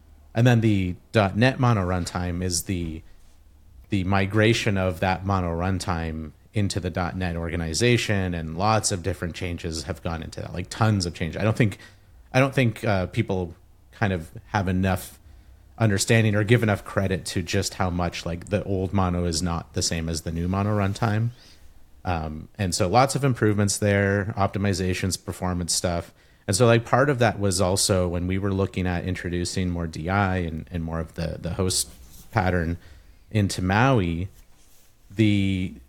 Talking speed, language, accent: 170 wpm, English, American